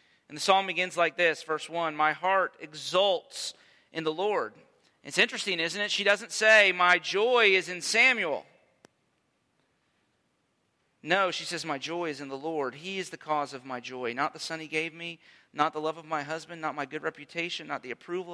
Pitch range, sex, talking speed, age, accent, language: 140-170 Hz, male, 200 wpm, 40-59, American, English